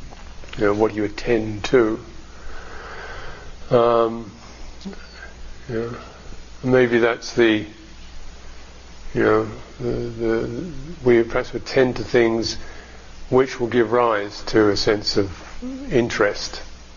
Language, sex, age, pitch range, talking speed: English, male, 50-69, 95-115 Hz, 110 wpm